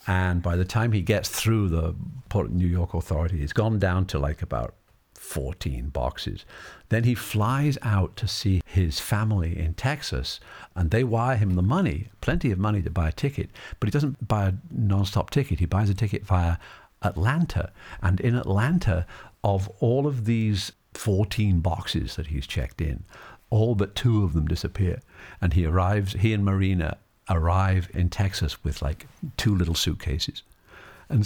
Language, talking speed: English, 170 wpm